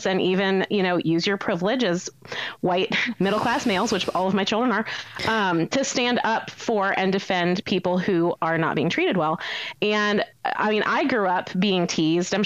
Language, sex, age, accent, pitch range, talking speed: English, female, 30-49, American, 185-235 Hz, 190 wpm